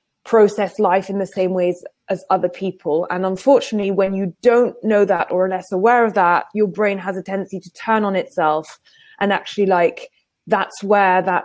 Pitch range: 190-230 Hz